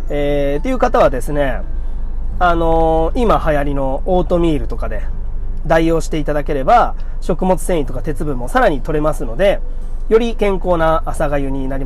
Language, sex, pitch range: Japanese, male, 120-185 Hz